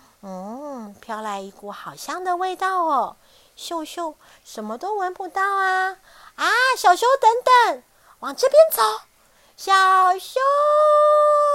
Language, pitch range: Chinese, 265-380 Hz